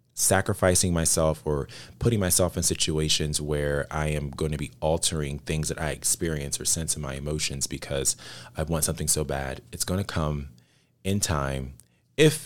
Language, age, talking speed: English, 30-49, 175 wpm